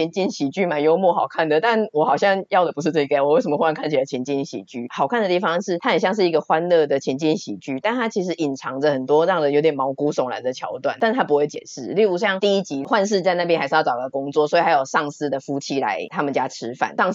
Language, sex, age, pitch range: Chinese, female, 30-49, 145-180 Hz